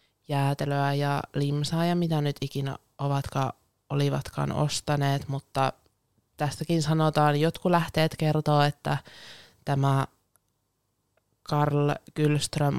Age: 20-39